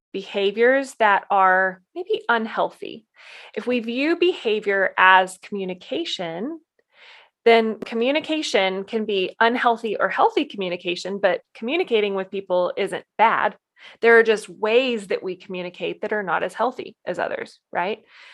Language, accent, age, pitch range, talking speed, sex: English, American, 20-39, 190-240 Hz, 130 wpm, female